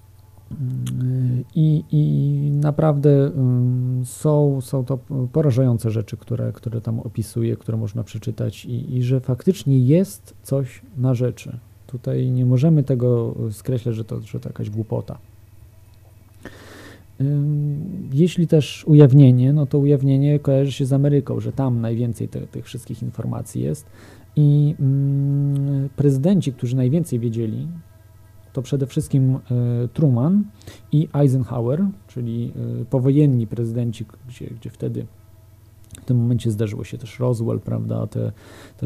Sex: male